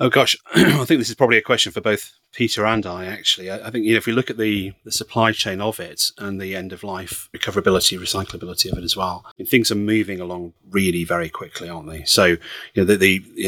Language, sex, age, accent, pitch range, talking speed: English, male, 30-49, British, 85-95 Hz, 245 wpm